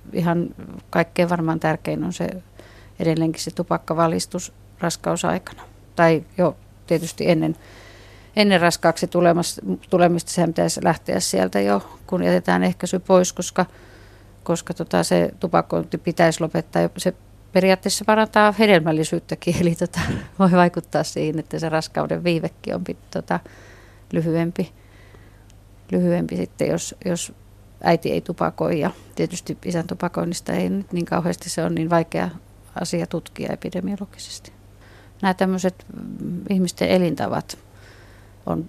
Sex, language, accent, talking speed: female, Finnish, native, 120 wpm